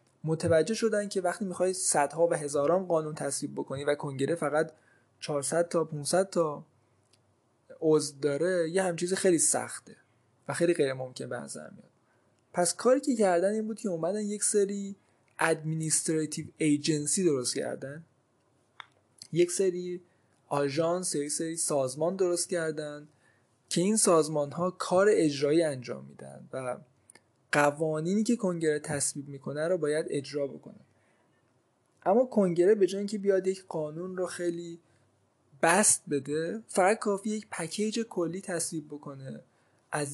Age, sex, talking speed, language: 20-39, male, 140 wpm, Persian